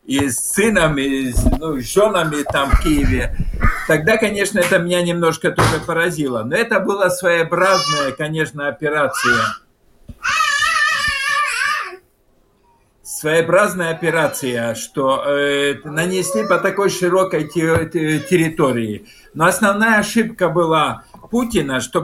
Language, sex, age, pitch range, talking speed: Russian, male, 50-69, 150-195 Hz, 100 wpm